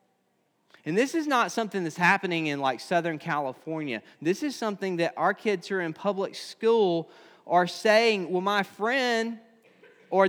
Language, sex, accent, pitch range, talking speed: English, male, American, 175-230 Hz, 165 wpm